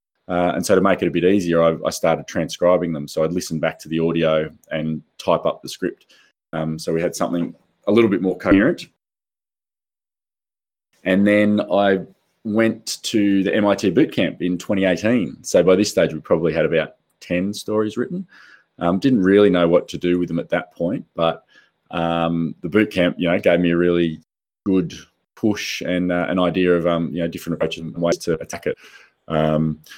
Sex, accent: male, Australian